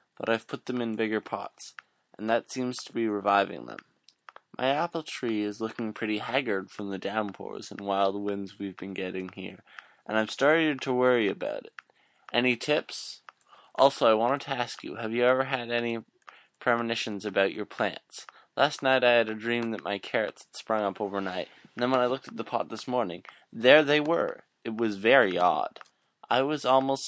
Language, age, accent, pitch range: English, 20-39, American, 100-125 Hz